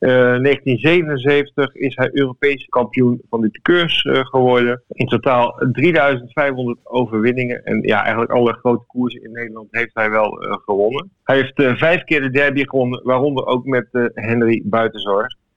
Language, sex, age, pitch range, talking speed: Dutch, male, 50-69, 110-135 Hz, 165 wpm